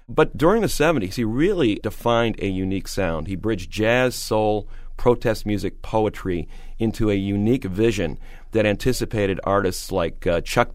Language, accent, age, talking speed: English, American, 40-59, 150 wpm